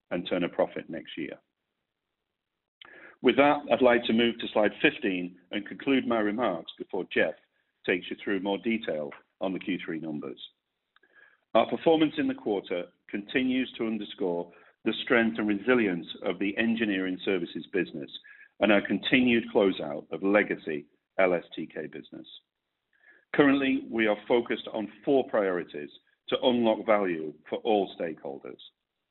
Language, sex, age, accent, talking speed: English, male, 50-69, British, 140 wpm